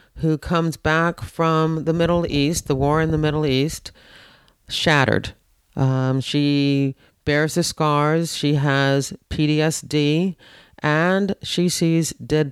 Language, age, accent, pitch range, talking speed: English, 40-59, American, 130-150 Hz, 125 wpm